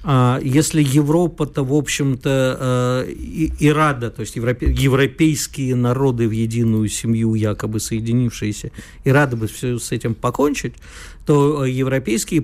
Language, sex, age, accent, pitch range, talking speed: Russian, male, 50-69, native, 120-165 Hz, 120 wpm